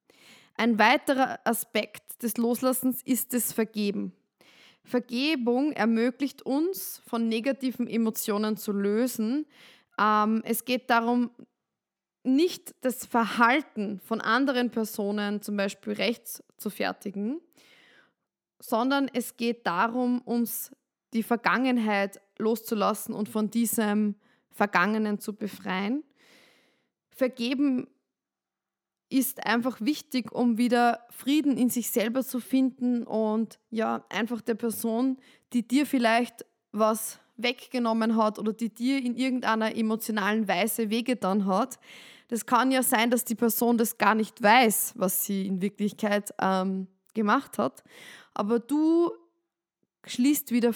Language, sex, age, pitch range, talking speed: German, female, 20-39, 215-255 Hz, 115 wpm